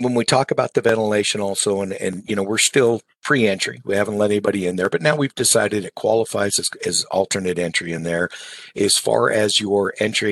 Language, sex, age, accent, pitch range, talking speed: English, male, 50-69, American, 95-110 Hz, 215 wpm